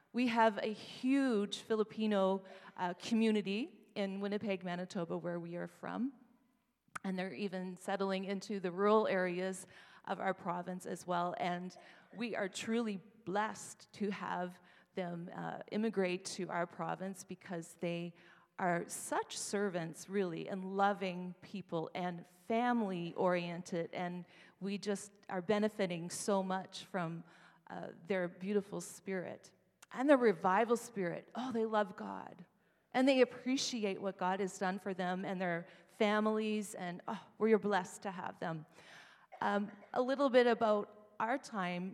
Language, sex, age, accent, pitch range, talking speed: English, female, 40-59, American, 180-215 Hz, 140 wpm